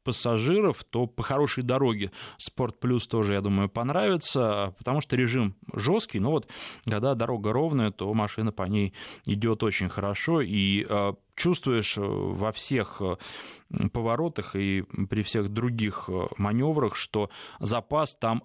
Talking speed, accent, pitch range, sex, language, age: 125 wpm, native, 105-135 Hz, male, Russian, 20-39